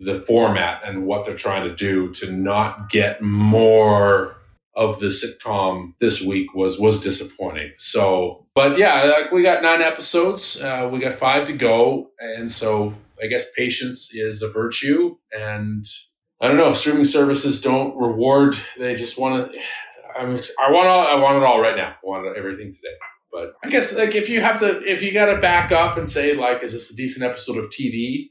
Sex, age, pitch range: male, 30-49, 105-130 Hz